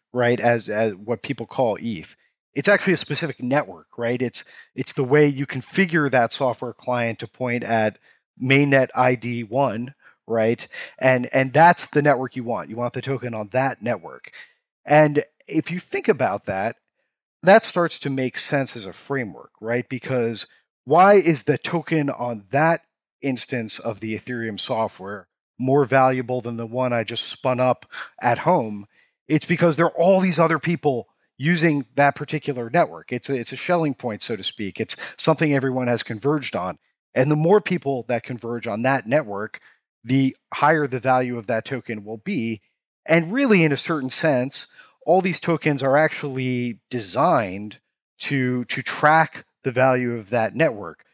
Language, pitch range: English, 120-150 Hz